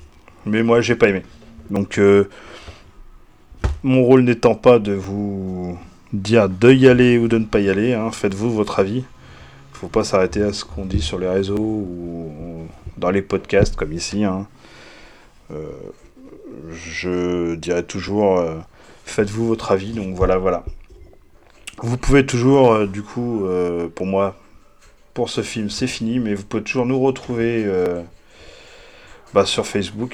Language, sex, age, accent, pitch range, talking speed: French, male, 30-49, French, 90-115 Hz, 165 wpm